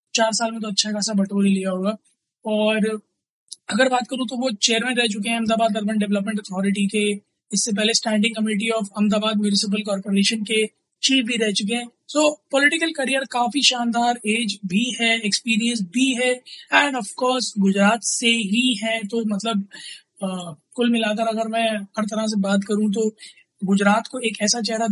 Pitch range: 200-230 Hz